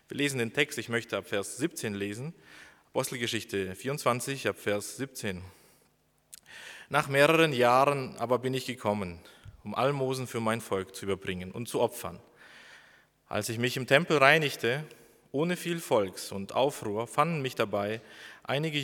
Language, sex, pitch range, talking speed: German, male, 110-140 Hz, 150 wpm